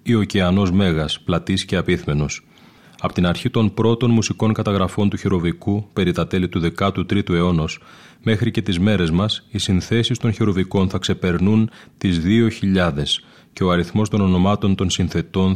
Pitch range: 85-105 Hz